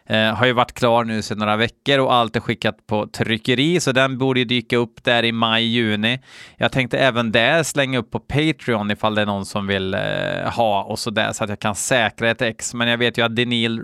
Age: 20-39